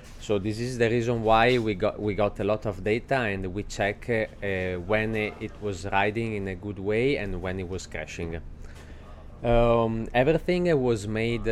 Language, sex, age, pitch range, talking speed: Swedish, male, 20-39, 90-110 Hz, 200 wpm